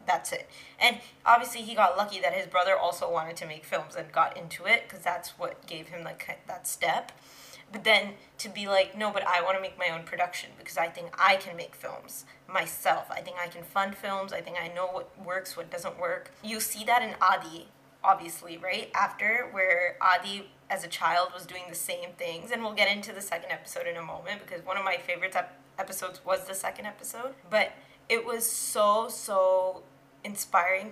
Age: 10-29